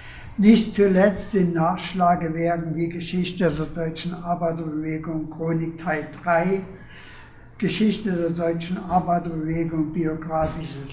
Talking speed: 95 wpm